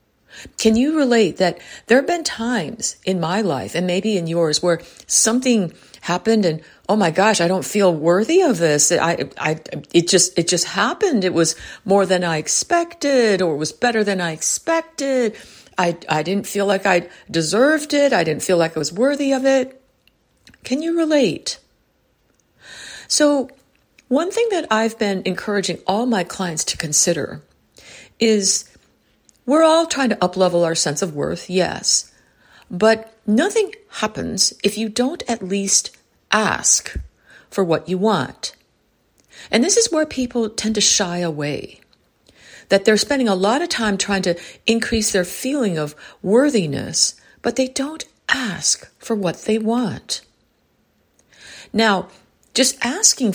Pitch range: 175-245 Hz